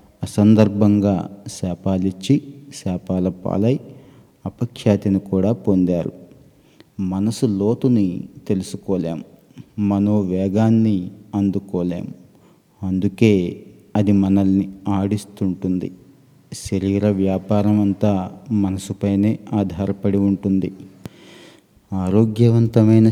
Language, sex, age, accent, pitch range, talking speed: Telugu, male, 30-49, native, 95-105 Hz, 55 wpm